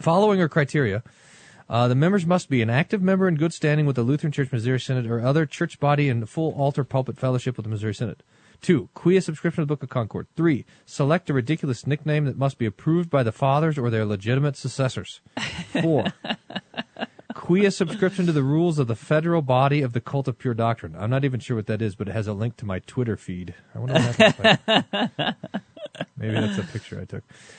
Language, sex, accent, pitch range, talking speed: English, male, American, 115-150 Hz, 215 wpm